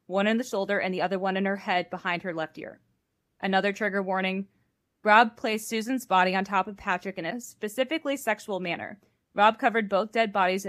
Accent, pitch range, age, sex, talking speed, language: American, 185-215 Hz, 20-39, female, 200 wpm, English